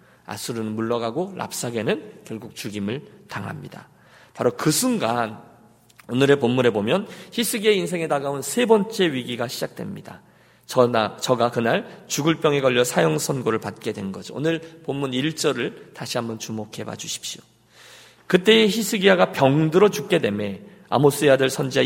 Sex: male